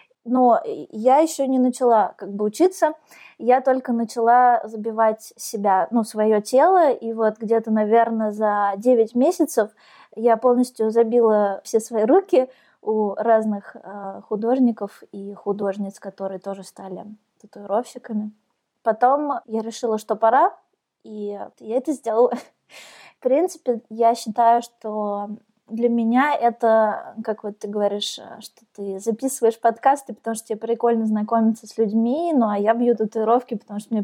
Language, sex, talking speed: Russian, female, 140 wpm